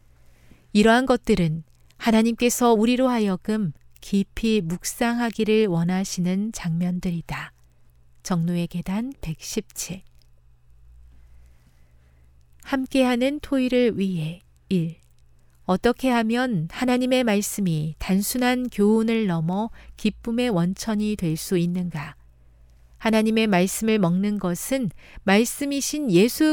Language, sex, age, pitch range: Korean, female, 40-59, 155-230 Hz